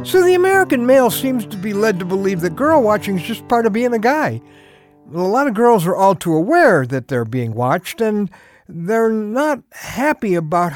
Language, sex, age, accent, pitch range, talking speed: English, male, 60-79, American, 155-255 Hz, 205 wpm